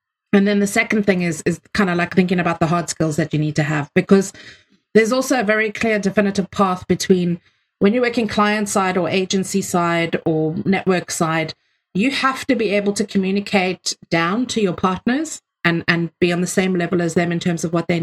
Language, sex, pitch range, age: English, female, 165-205 Hz, 30-49